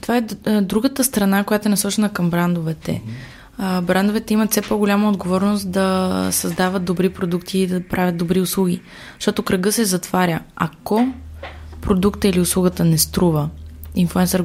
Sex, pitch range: female, 160-195 Hz